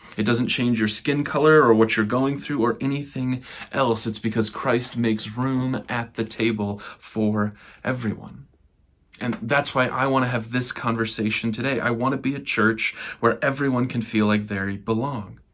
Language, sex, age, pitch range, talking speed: English, male, 30-49, 110-130 Hz, 180 wpm